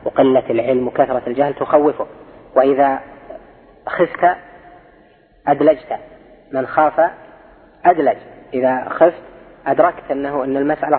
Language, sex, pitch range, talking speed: Arabic, female, 145-175 Hz, 95 wpm